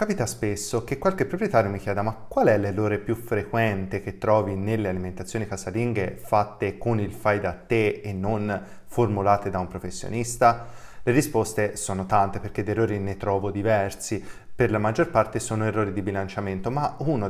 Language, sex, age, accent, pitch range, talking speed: Italian, male, 20-39, native, 100-125 Hz, 170 wpm